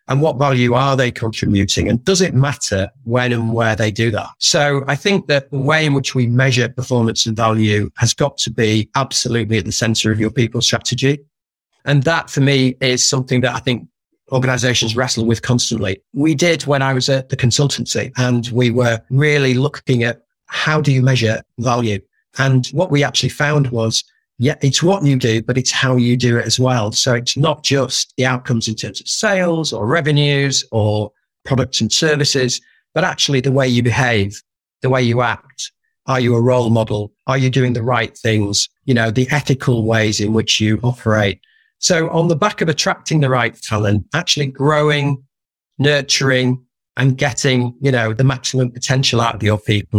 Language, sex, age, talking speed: English, male, 40-59, 195 wpm